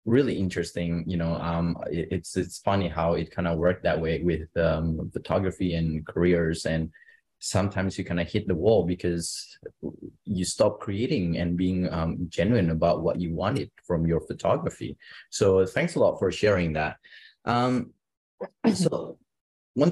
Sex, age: male, 20-39